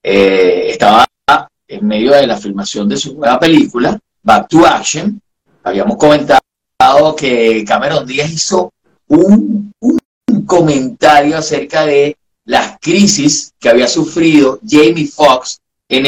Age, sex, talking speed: 30-49, male, 125 wpm